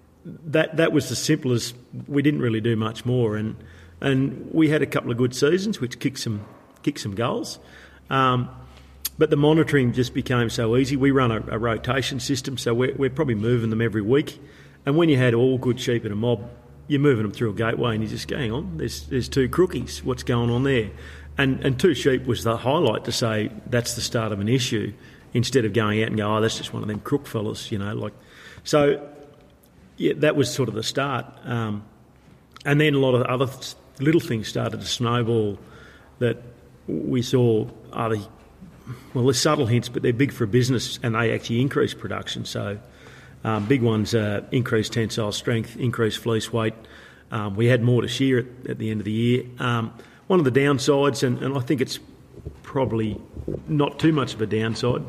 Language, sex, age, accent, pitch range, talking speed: English, male, 40-59, Australian, 110-135 Hz, 205 wpm